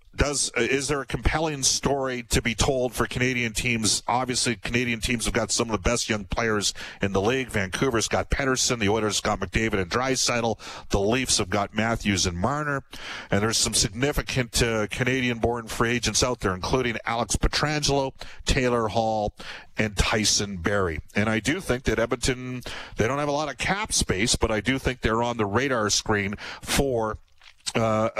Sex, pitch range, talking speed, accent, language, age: male, 105-125 Hz, 180 wpm, American, English, 50-69